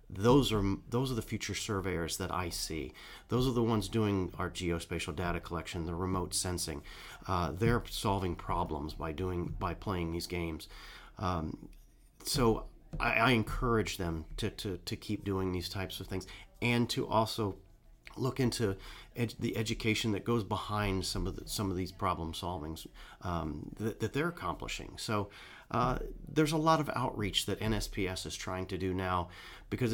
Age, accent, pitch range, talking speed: 40-59, American, 90-110 Hz, 170 wpm